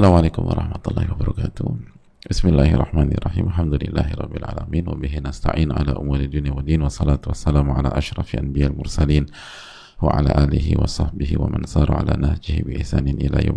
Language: Indonesian